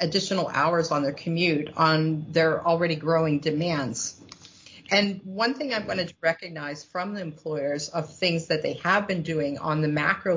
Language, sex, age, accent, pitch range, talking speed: English, female, 40-59, American, 155-180 Hz, 175 wpm